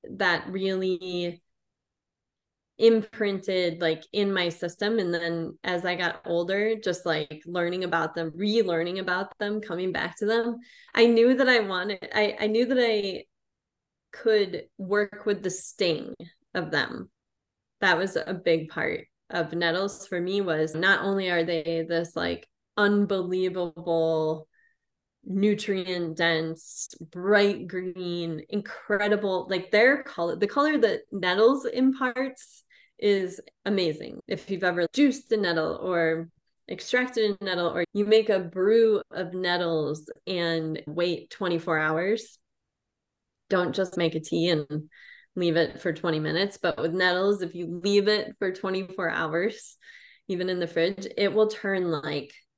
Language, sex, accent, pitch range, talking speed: English, female, American, 170-205 Hz, 140 wpm